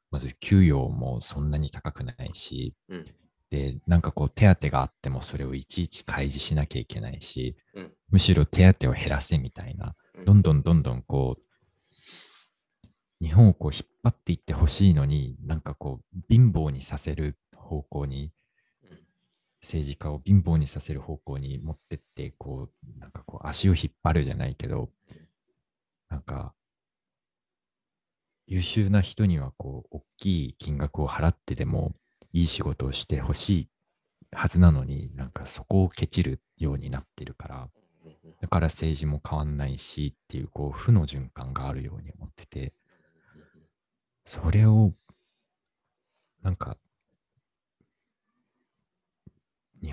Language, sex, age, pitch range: Japanese, male, 40-59, 70-90 Hz